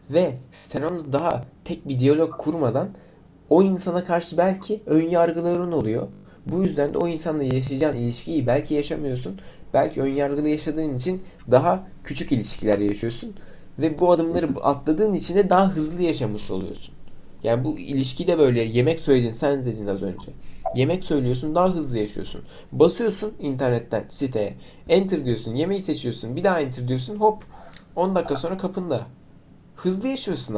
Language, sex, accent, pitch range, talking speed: Turkish, male, native, 130-185 Hz, 150 wpm